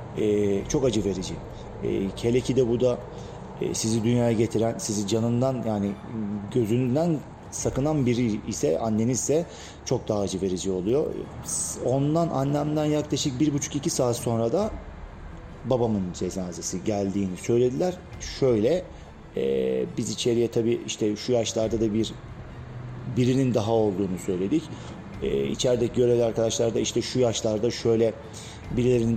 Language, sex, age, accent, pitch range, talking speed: Turkish, male, 40-59, native, 100-125 Hz, 130 wpm